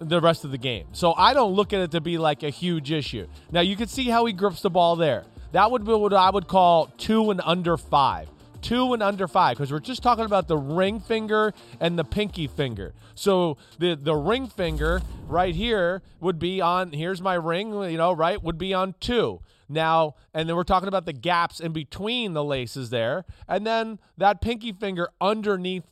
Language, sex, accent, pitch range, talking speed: English, male, American, 155-210 Hz, 215 wpm